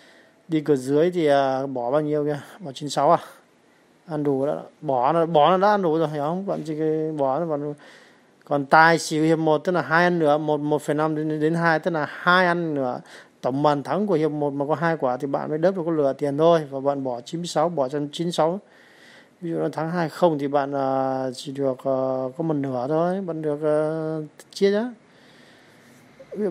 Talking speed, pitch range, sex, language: 215 wpm, 145-170 Hz, male, Vietnamese